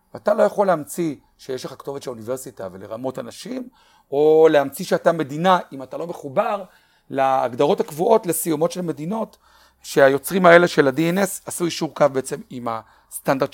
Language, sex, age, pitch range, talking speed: Hebrew, male, 40-59, 130-175 Hz, 150 wpm